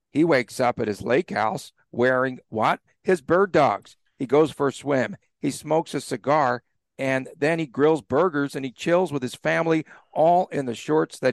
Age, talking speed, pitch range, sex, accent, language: 50-69, 195 wpm, 120-150 Hz, male, American, English